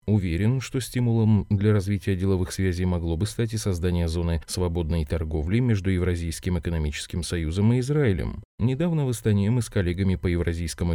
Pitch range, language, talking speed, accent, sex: 90-115 Hz, Russian, 160 wpm, native, male